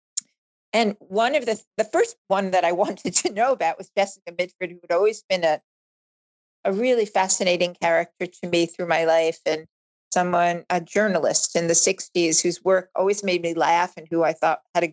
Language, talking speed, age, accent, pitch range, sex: English, 195 wpm, 50-69, American, 165-200 Hz, female